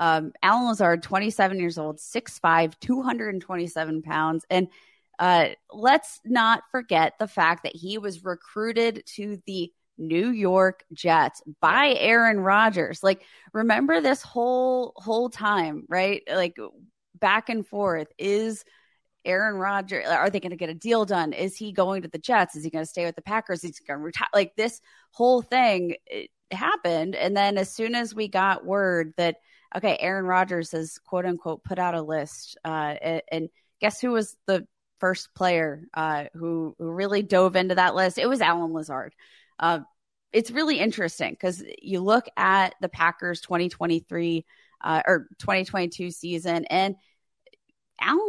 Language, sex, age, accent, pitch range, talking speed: English, female, 20-39, American, 165-215 Hz, 165 wpm